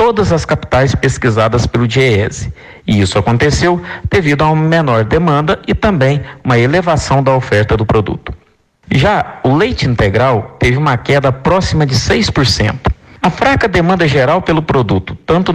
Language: Portuguese